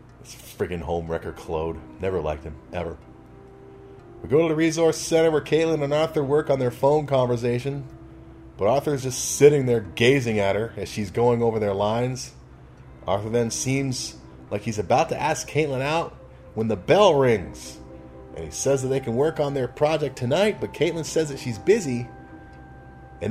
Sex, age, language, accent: male, 30-49, English, American